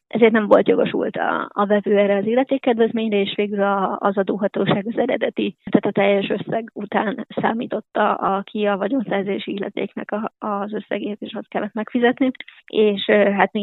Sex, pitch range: female, 205-235 Hz